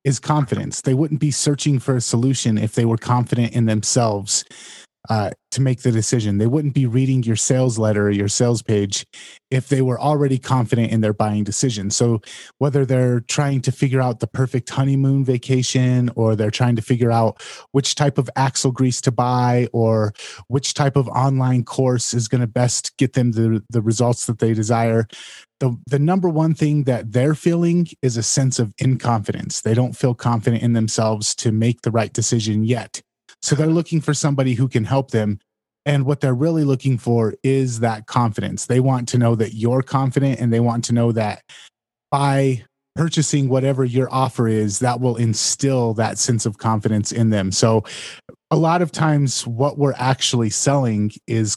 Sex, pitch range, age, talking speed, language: male, 115-135 Hz, 30-49, 190 wpm, English